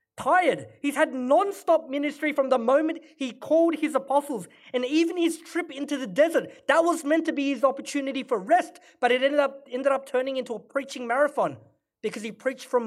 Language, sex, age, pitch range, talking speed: English, male, 30-49, 185-275 Hz, 200 wpm